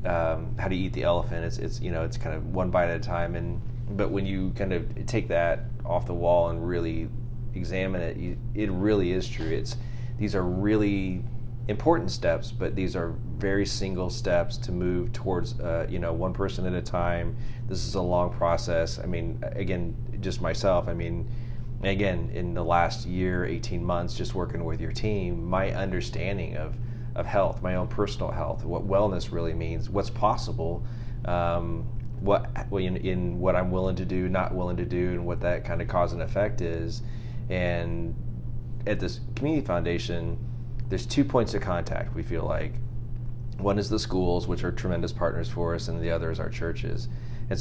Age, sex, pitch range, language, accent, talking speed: 30-49, male, 90-120 Hz, English, American, 190 wpm